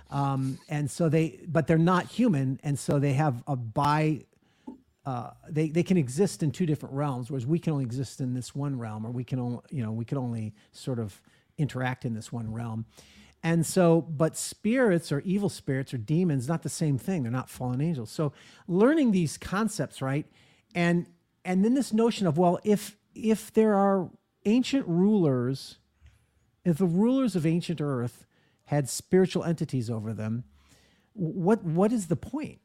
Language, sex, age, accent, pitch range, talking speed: English, male, 50-69, American, 125-175 Hz, 180 wpm